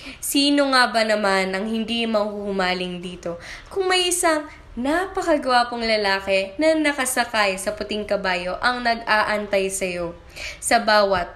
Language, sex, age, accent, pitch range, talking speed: Filipino, female, 20-39, native, 195-275 Hz, 120 wpm